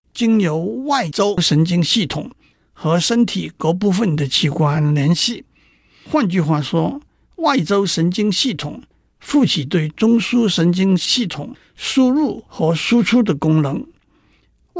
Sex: male